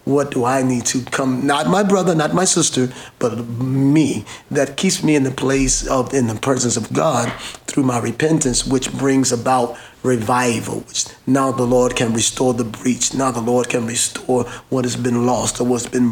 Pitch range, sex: 120-135 Hz, male